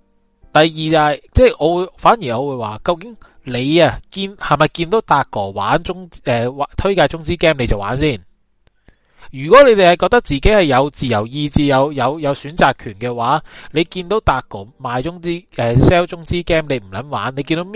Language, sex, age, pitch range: Chinese, male, 20-39, 120-175 Hz